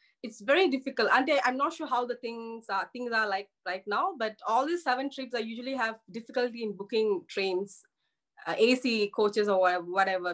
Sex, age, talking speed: female, 20-39, 195 wpm